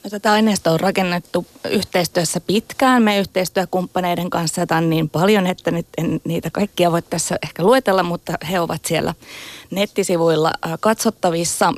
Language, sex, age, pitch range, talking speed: Finnish, female, 20-39, 160-200 Hz, 140 wpm